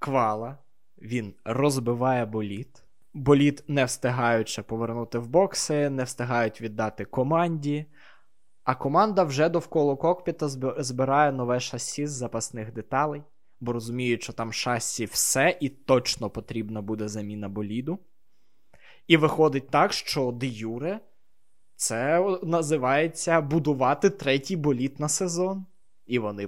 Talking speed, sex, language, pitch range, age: 120 wpm, male, Ukrainian, 120-160 Hz, 20-39